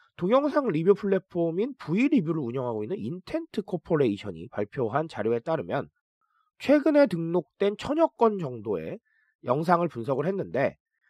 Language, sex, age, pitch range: Korean, male, 30-49, 150-245 Hz